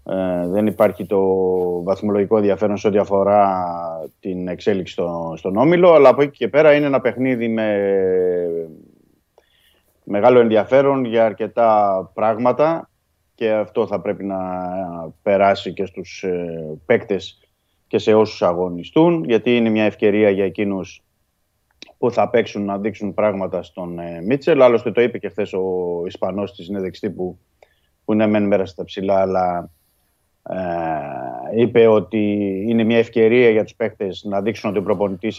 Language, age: Greek, 30-49